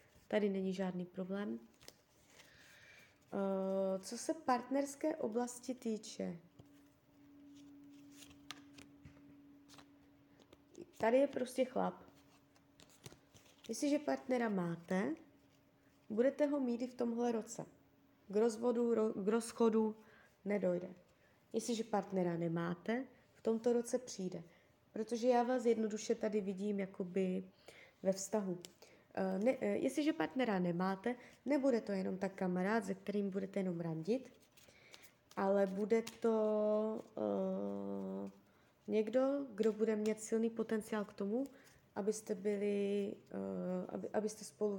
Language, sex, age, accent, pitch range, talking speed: Czech, female, 20-39, native, 185-235 Hz, 105 wpm